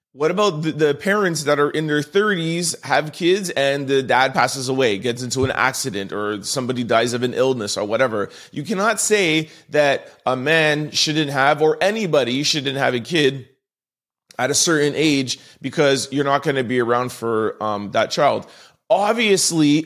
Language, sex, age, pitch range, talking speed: English, male, 30-49, 125-160 Hz, 175 wpm